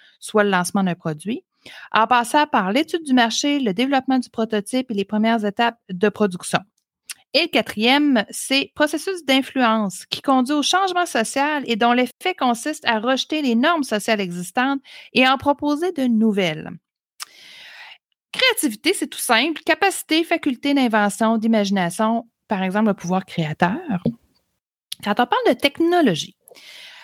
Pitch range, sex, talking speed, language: 210-280 Hz, female, 145 wpm, English